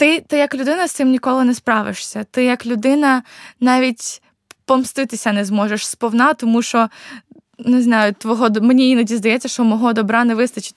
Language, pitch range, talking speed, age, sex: Ukrainian, 220-250 Hz, 160 wpm, 20-39, female